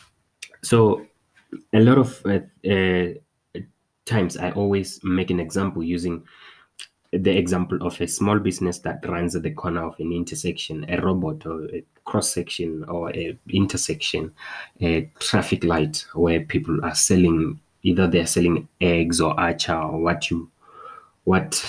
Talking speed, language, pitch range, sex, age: 145 wpm, English, 85-100 Hz, male, 20-39